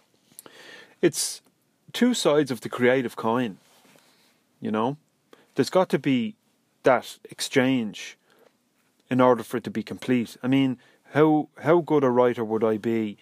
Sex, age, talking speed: male, 30-49, 145 wpm